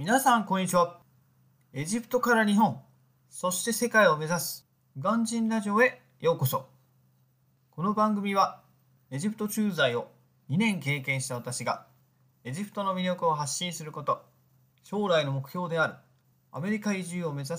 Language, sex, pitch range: Japanese, male, 130-180 Hz